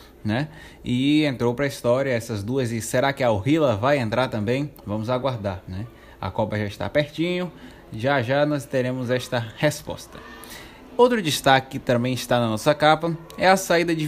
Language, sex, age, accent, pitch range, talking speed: Portuguese, male, 20-39, Brazilian, 125-160 Hz, 180 wpm